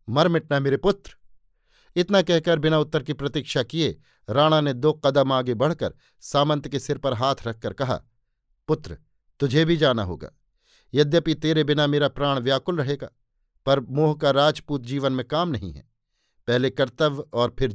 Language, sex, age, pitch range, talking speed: Hindi, male, 50-69, 135-155 Hz, 165 wpm